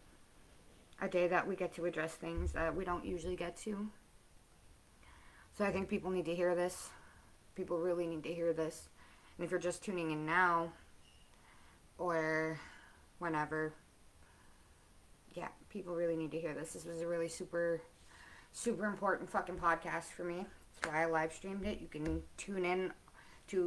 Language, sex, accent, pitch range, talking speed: English, female, American, 160-185 Hz, 165 wpm